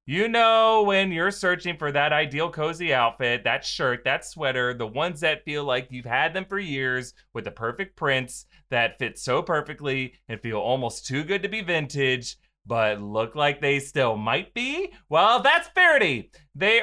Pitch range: 135-205 Hz